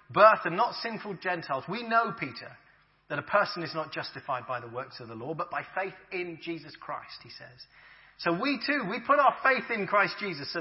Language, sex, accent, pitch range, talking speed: English, male, British, 165-240 Hz, 220 wpm